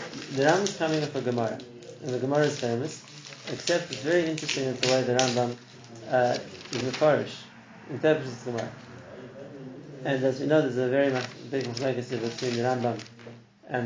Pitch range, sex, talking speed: 120-150 Hz, male, 180 wpm